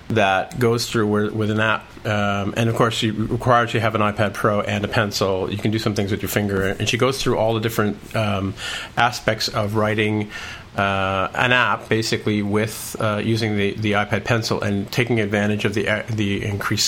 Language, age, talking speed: English, 40-59, 210 wpm